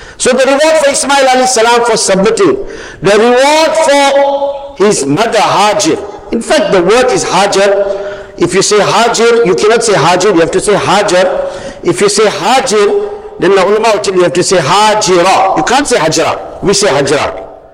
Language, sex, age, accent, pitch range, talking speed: English, male, 50-69, Indian, 195-275 Hz, 180 wpm